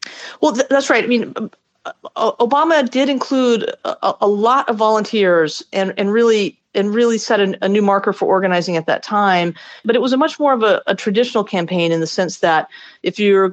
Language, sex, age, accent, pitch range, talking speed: English, female, 40-59, American, 170-210 Hz, 210 wpm